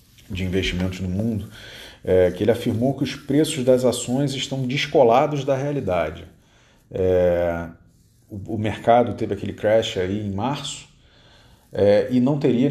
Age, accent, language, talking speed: 40-59, Brazilian, Portuguese, 145 wpm